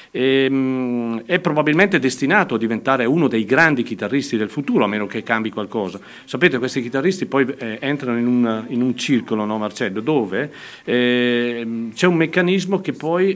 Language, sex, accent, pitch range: Italian, male, native, 115-140 Hz